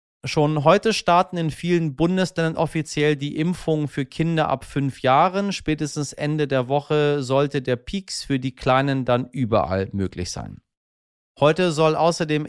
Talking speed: 150 wpm